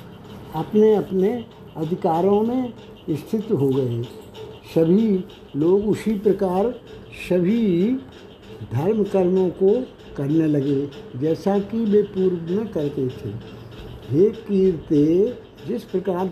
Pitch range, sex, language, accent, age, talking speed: 155-195 Hz, male, Hindi, native, 60-79, 105 wpm